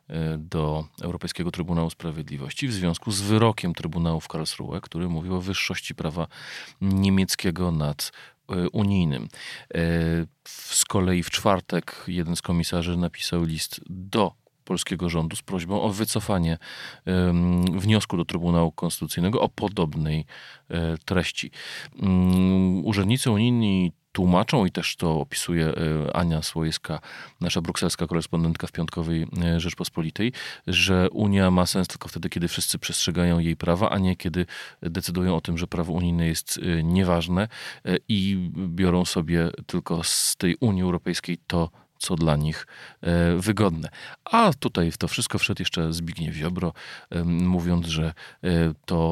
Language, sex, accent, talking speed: Polish, male, native, 125 wpm